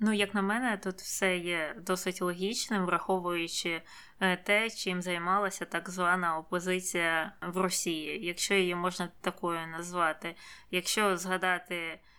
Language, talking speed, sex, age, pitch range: Ukrainian, 125 wpm, female, 20-39, 170-200 Hz